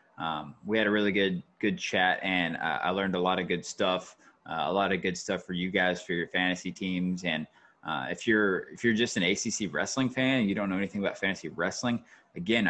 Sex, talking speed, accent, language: male, 235 wpm, American, English